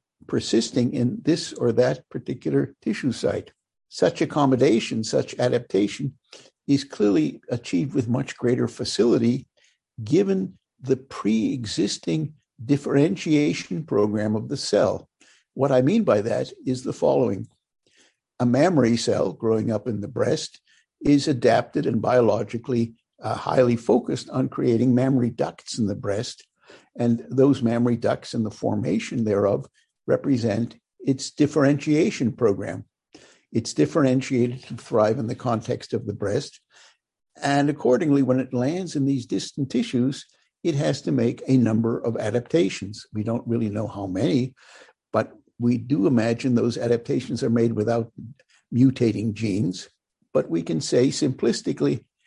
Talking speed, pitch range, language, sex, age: 135 wpm, 115-135 Hz, English, male, 60-79